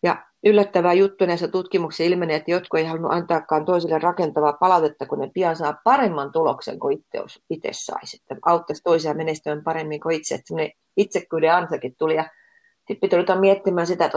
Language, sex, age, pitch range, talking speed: Finnish, female, 30-49, 160-195 Hz, 175 wpm